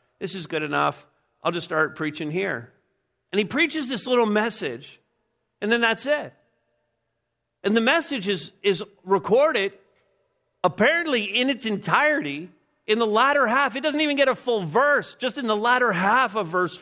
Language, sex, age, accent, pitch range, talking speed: English, male, 50-69, American, 195-265 Hz, 170 wpm